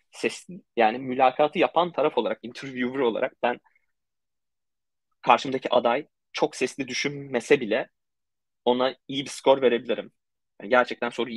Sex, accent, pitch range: male, native, 115-140 Hz